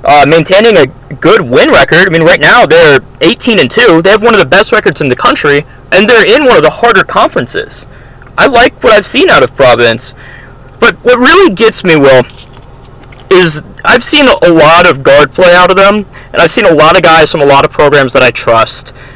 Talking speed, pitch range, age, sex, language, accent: 225 wpm, 135-185 Hz, 20-39, male, English, American